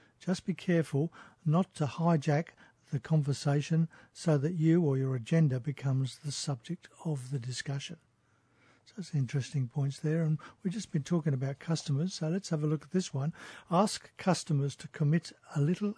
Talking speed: 175 wpm